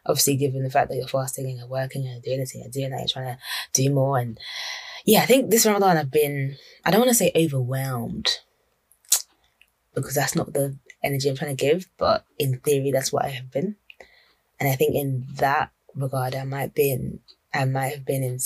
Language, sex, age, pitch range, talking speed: English, female, 20-39, 130-165 Hz, 220 wpm